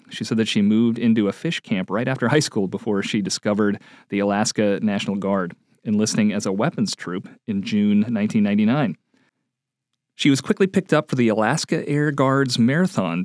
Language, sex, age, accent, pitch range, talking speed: English, male, 40-59, American, 120-160 Hz, 175 wpm